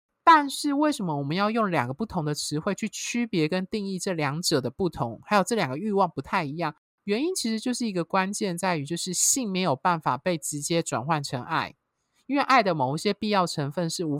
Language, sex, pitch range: Chinese, male, 160-225 Hz